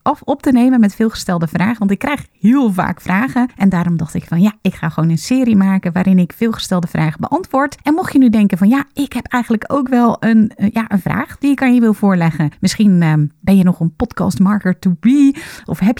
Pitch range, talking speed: 180-235 Hz, 235 wpm